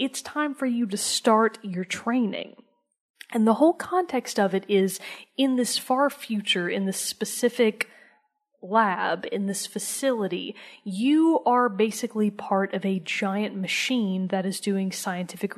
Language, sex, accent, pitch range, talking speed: English, female, American, 195-245 Hz, 145 wpm